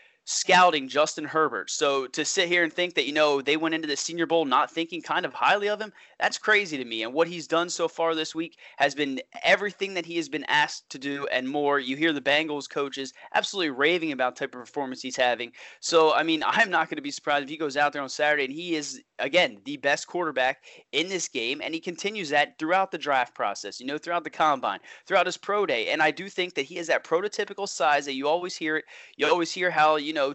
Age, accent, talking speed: 30-49, American, 255 wpm